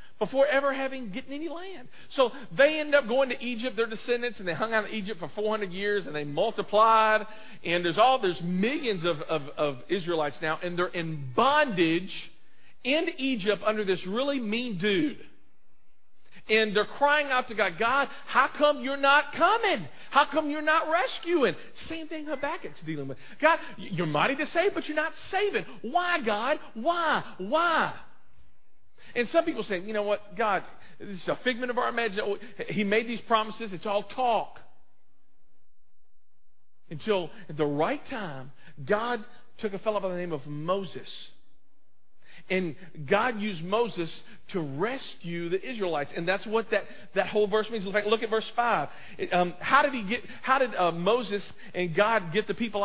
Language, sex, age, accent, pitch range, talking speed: English, male, 40-59, American, 185-265 Hz, 175 wpm